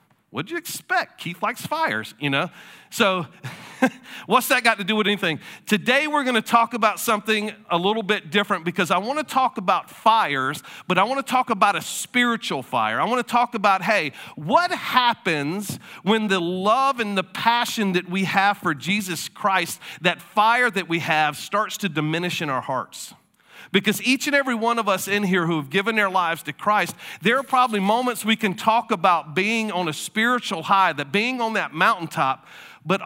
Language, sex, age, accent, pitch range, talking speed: English, male, 40-59, American, 175-225 Hz, 190 wpm